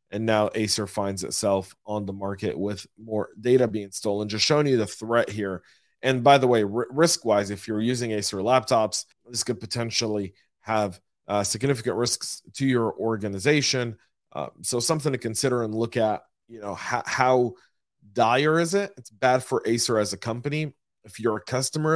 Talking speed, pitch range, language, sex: 175 wpm, 100-125 Hz, English, male